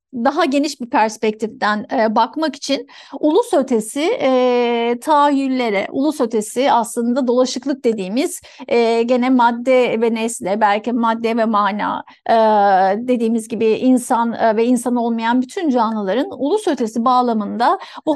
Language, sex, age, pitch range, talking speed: Turkish, female, 60-79, 230-300 Hz, 130 wpm